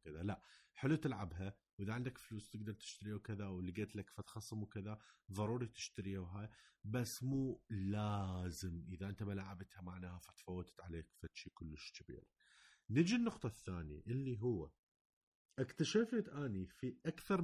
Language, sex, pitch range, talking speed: Arabic, male, 90-130 Hz, 130 wpm